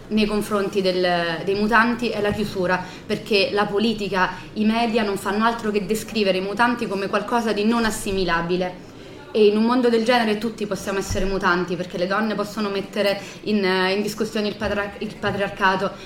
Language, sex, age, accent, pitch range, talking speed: Italian, female, 30-49, native, 195-215 Hz, 170 wpm